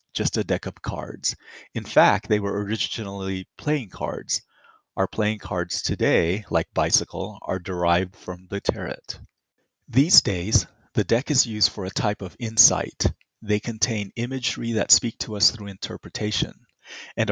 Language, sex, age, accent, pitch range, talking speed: English, male, 30-49, American, 90-110 Hz, 150 wpm